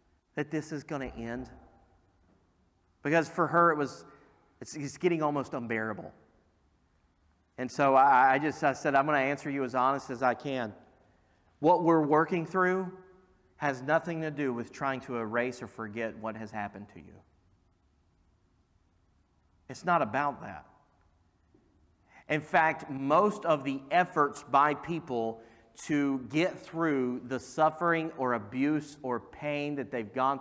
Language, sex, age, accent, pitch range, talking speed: English, male, 40-59, American, 105-140 Hz, 150 wpm